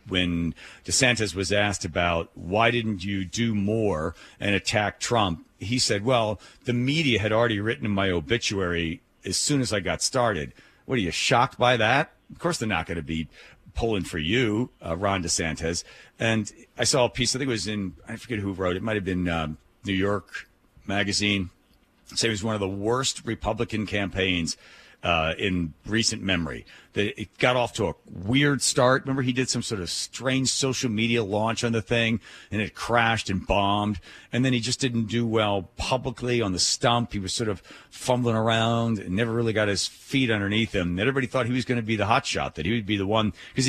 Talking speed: 205 wpm